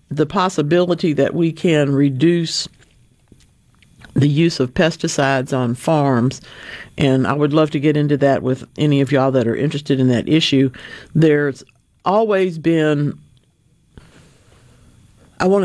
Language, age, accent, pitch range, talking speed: English, 50-69, American, 130-160 Hz, 135 wpm